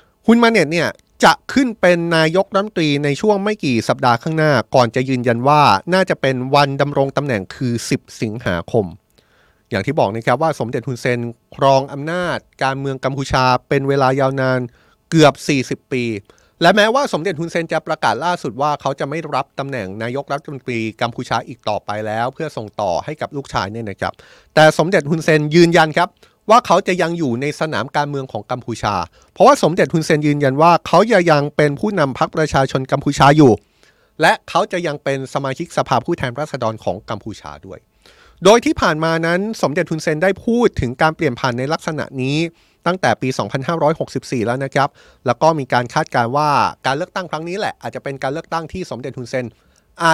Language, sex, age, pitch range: Thai, male, 20-39, 125-165 Hz